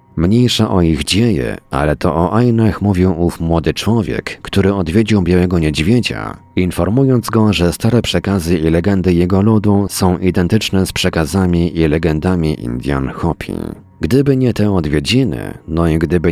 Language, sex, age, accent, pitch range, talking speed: Polish, male, 40-59, native, 85-105 Hz, 145 wpm